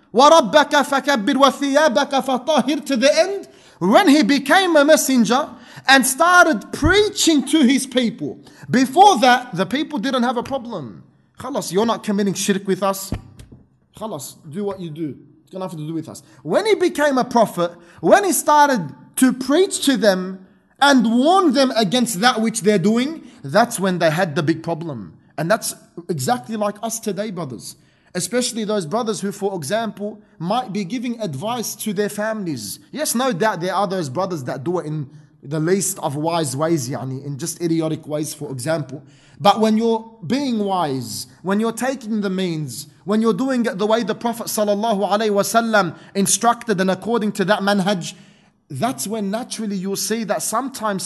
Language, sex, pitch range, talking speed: English, male, 175-250 Hz, 170 wpm